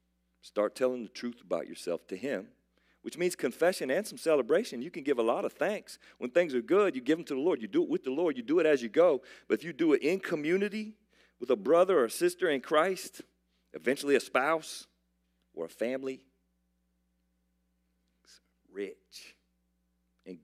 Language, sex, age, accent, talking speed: English, male, 50-69, American, 195 wpm